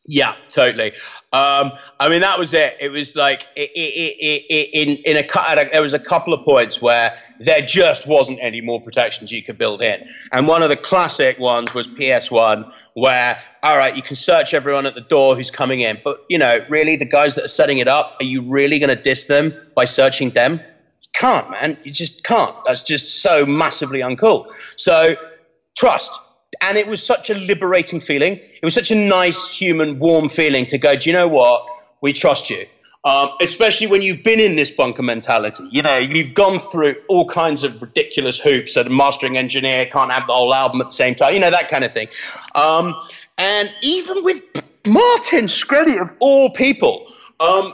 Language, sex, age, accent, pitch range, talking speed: English, male, 30-49, British, 135-200 Hz, 205 wpm